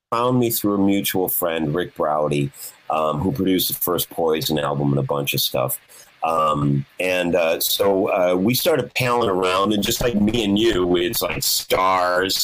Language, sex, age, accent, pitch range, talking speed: English, male, 40-59, American, 90-120 Hz, 180 wpm